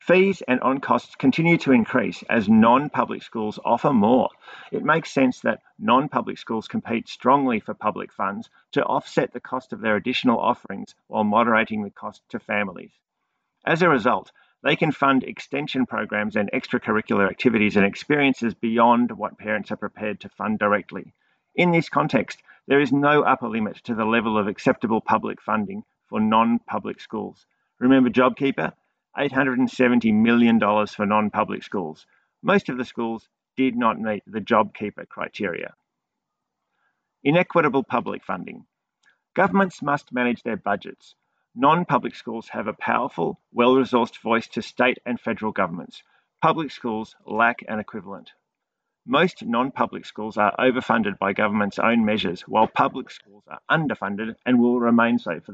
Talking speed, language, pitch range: 150 wpm, English, 110-135 Hz